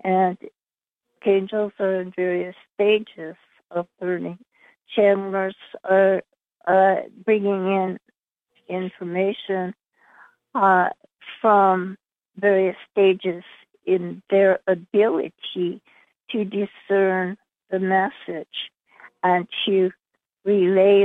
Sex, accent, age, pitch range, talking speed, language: female, American, 50-69, 185-205 Hz, 80 wpm, English